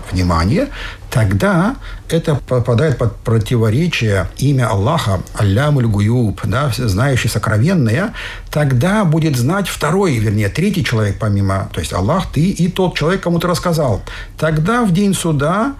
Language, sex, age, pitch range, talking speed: Russian, male, 60-79, 105-170 Hz, 125 wpm